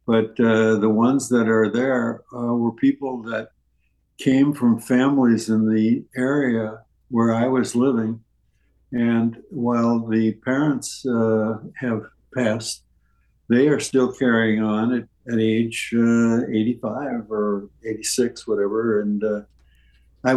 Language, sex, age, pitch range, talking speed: English, male, 60-79, 110-130 Hz, 130 wpm